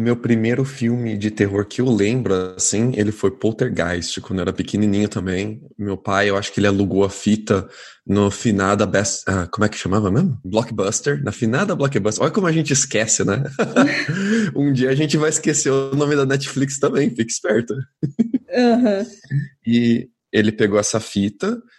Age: 20-39